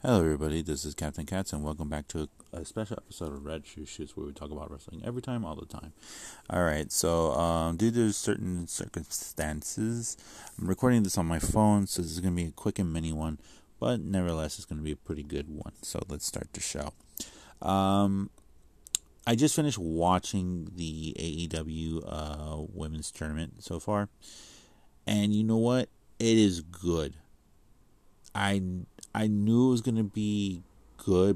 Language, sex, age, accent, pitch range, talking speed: English, male, 30-49, American, 80-95 Hz, 180 wpm